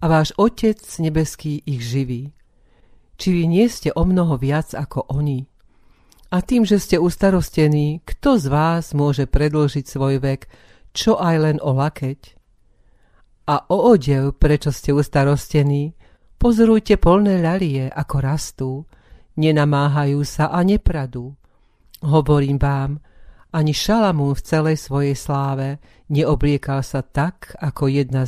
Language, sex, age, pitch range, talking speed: Slovak, female, 50-69, 140-165 Hz, 125 wpm